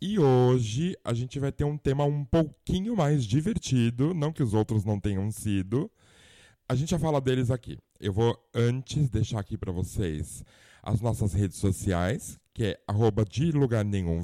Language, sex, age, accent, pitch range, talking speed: Portuguese, male, 20-39, Brazilian, 110-150 Hz, 175 wpm